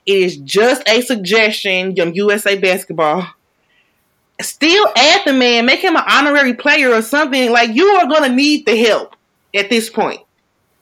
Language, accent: English, American